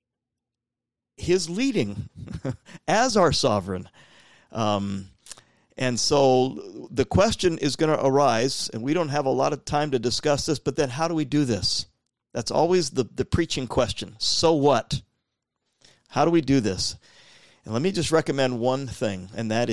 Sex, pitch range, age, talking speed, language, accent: male, 110-140 Hz, 50-69, 165 wpm, English, American